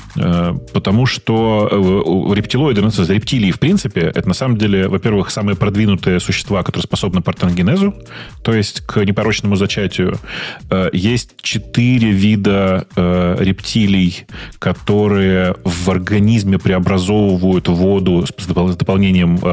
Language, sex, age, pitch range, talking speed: Russian, male, 30-49, 90-110 Hz, 100 wpm